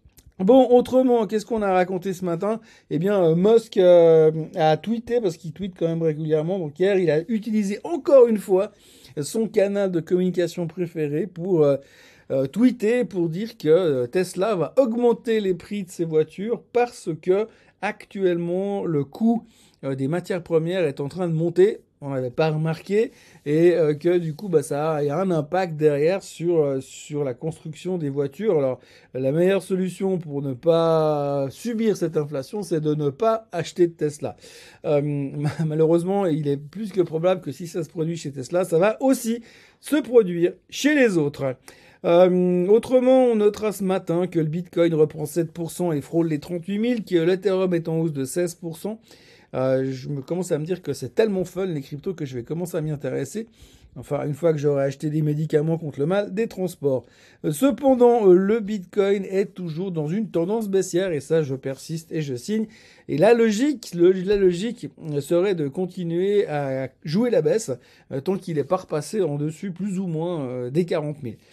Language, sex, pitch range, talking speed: French, male, 155-200 Hz, 185 wpm